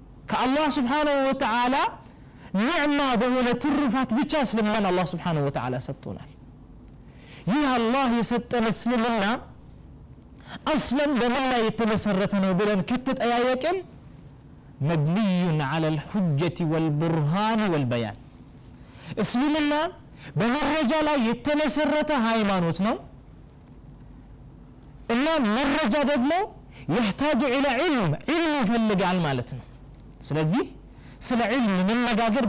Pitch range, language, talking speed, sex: 165-265 Hz, Amharic, 85 wpm, male